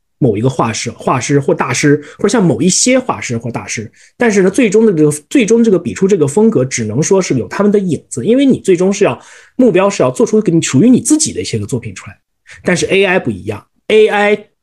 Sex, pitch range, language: male, 130-200 Hz, Chinese